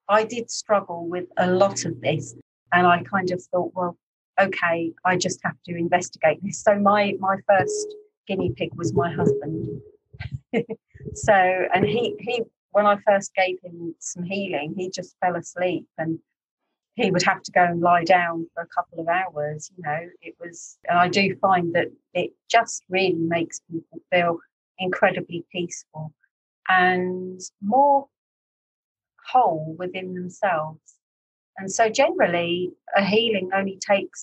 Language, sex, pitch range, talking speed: English, female, 170-195 Hz, 155 wpm